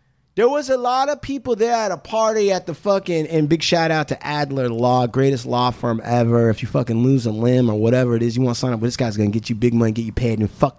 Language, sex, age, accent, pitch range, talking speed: English, male, 30-49, American, 125-200 Hz, 295 wpm